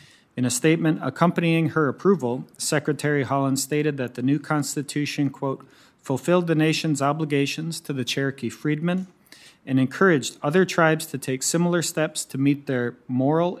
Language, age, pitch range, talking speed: English, 30-49, 125-155 Hz, 150 wpm